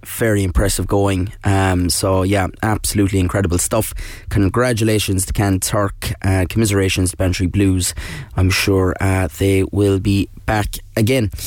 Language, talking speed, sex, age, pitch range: English, 130 wpm, male, 20-39, 95-115 Hz